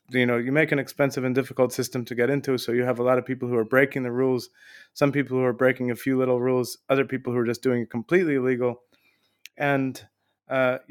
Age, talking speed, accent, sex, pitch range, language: 30-49, 240 wpm, American, male, 125-140 Hz, English